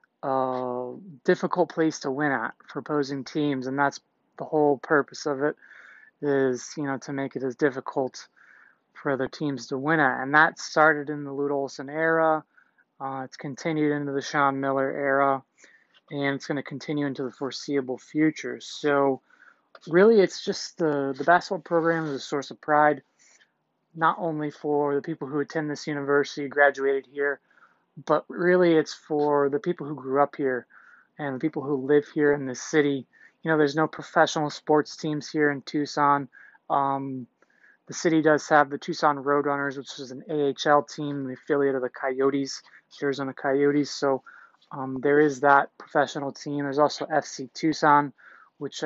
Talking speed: 170 wpm